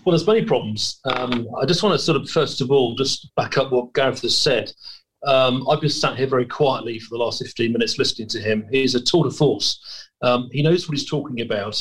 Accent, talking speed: British, 245 wpm